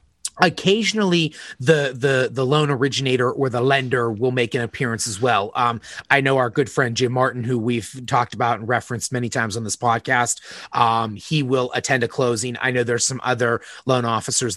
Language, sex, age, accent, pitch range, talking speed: English, male, 30-49, American, 120-150 Hz, 195 wpm